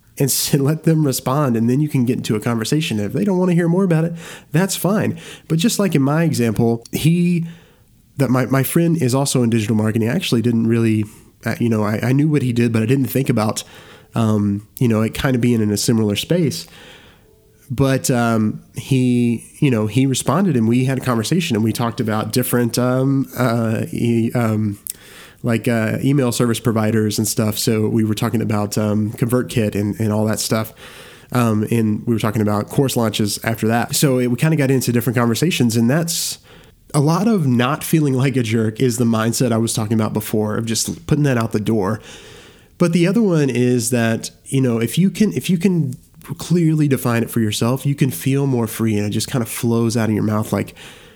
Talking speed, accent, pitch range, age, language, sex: 220 wpm, American, 110-140 Hz, 30-49, English, male